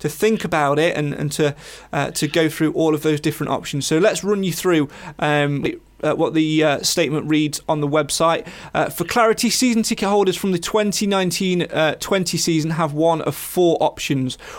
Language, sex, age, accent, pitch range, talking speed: English, male, 30-49, British, 155-195 Hz, 195 wpm